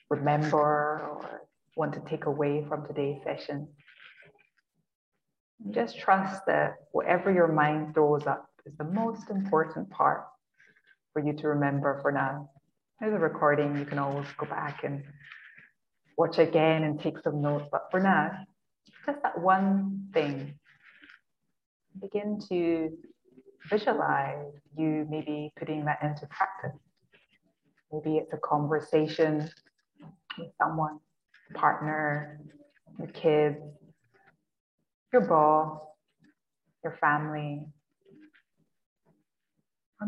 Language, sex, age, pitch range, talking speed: English, female, 20-39, 145-175 Hz, 110 wpm